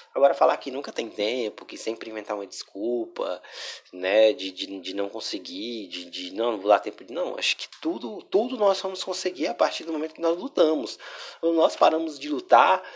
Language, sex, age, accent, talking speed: Portuguese, male, 20-39, Brazilian, 205 wpm